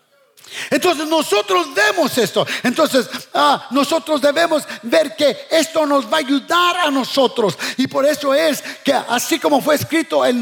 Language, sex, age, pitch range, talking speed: English, male, 50-69, 260-315 Hz, 155 wpm